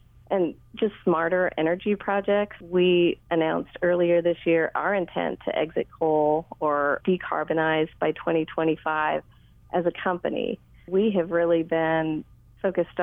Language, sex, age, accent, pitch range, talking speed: English, female, 30-49, American, 160-180 Hz, 125 wpm